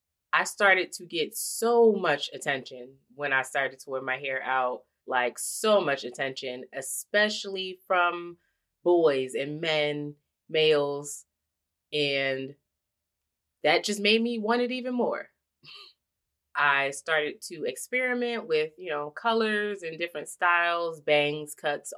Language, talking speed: English, 130 wpm